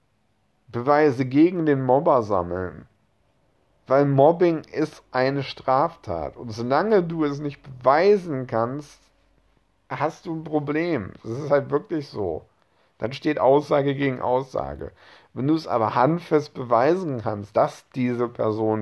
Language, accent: German, German